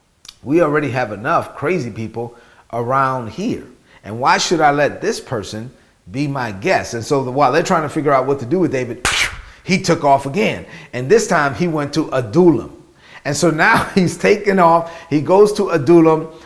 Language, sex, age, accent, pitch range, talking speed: English, male, 40-59, American, 135-165 Hz, 190 wpm